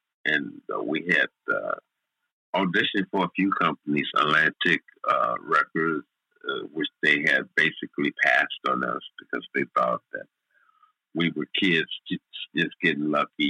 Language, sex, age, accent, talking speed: English, male, 50-69, American, 140 wpm